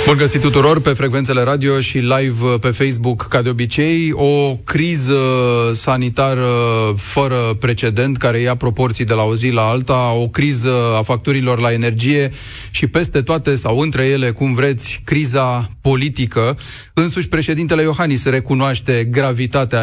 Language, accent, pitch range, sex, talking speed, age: Romanian, native, 120-155 Hz, male, 145 wpm, 30-49